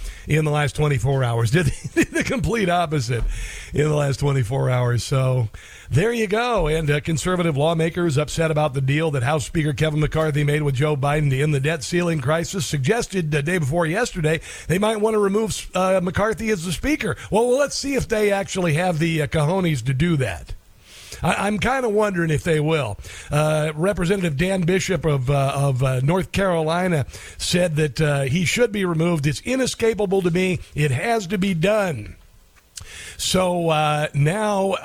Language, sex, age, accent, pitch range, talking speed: English, male, 50-69, American, 150-195 Hz, 185 wpm